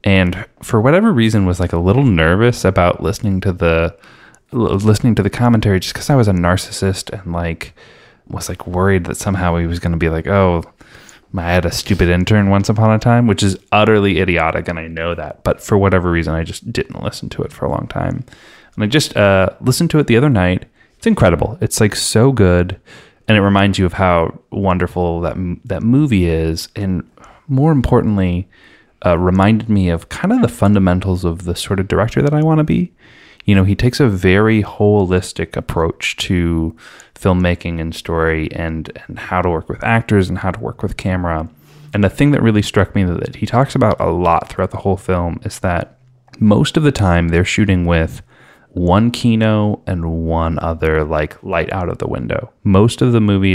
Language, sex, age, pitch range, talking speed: English, male, 20-39, 85-110 Hz, 205 wpm